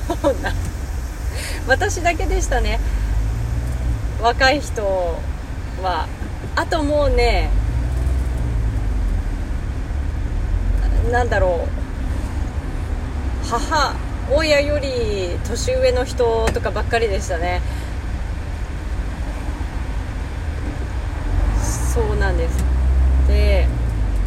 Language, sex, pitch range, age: Japanese, female, 75-95 Hz, 30-49